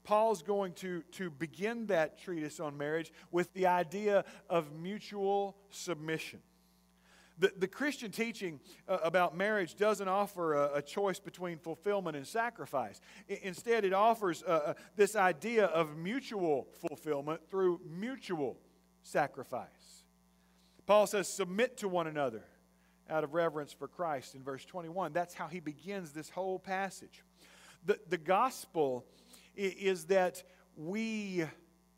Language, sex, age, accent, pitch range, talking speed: English, male, 40-59, American, 150-205 Hz, 130 wpm